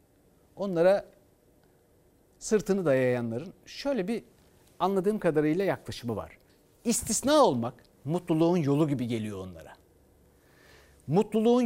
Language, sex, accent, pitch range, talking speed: Turkish, male, native, 135-220 Hz, 85 wpm